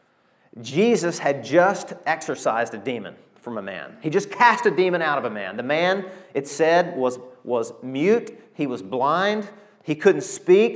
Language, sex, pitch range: English, male, 150-220 Hz